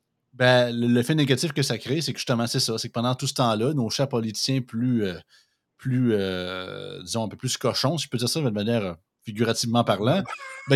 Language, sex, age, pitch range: French, male, 30-49, 120-160 Hz